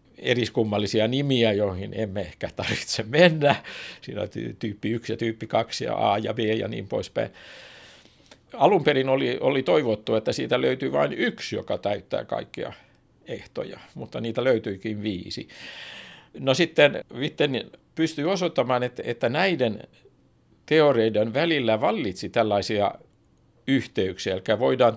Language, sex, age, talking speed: Finnish, male, 60-79, 125 wpm